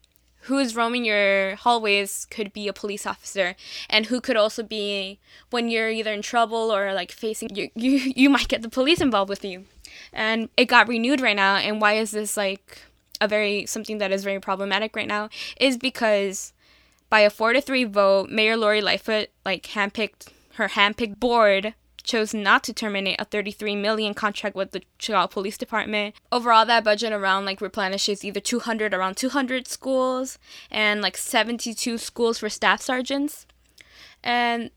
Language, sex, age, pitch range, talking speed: English, female, 10-29, 200-240 Hz, 180 wpm